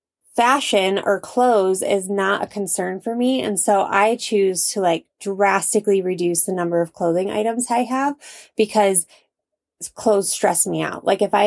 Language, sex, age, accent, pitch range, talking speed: English, female, 20-39, American, 185-225 Hz, 165 wpm